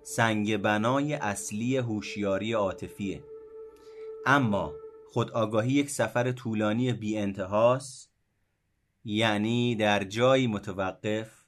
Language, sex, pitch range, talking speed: Persian, male, 105-135 Hz, 90 wpm